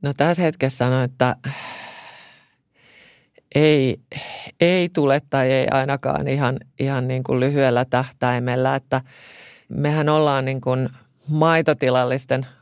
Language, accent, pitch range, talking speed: Finnish, native, 130-155 Hz, 110 wpm